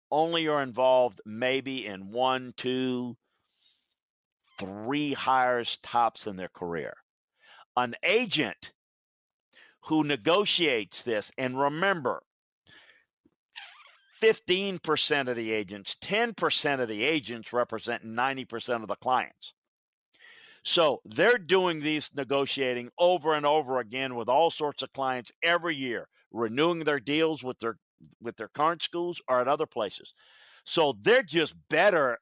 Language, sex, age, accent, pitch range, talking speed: English, male, 50-69, American, 125-165 Hz, 125 wpm